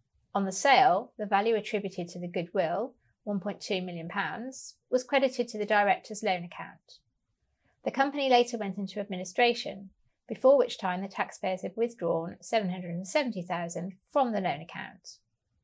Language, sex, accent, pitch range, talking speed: English, female, British, 185-235 Hz, 140 wpm